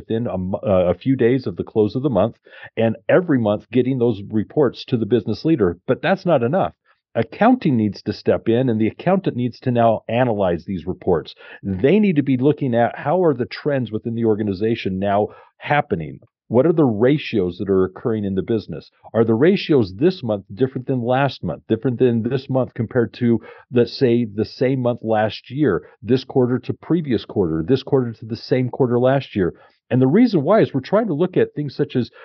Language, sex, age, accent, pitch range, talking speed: English, male, 50-69, American, 110-145 Hz, 210 wpm